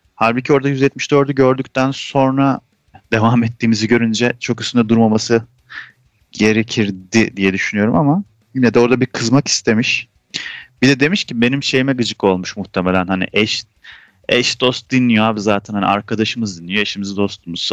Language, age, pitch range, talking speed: Turkish, 30-49, 105-145 Hz, 140 wpm